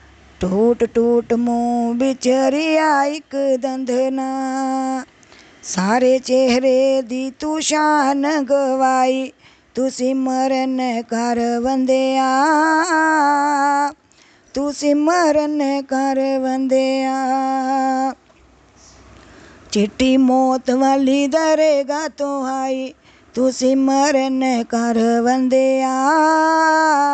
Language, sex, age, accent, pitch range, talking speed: Hindi, female, 20-39, native, 260-300 Hz, 65 wpm